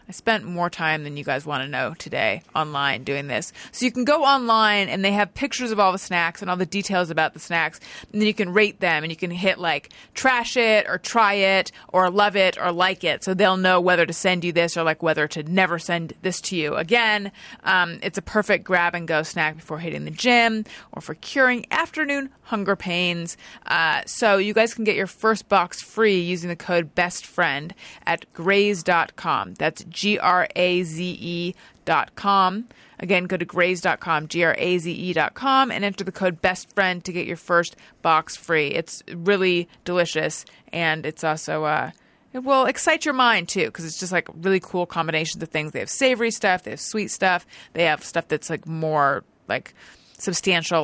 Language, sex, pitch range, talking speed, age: English, female, 165-205 Hz, 205 wpm, 30-49